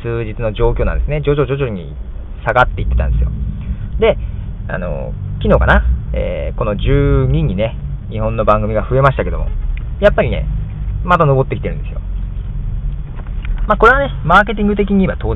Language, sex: Japanese, male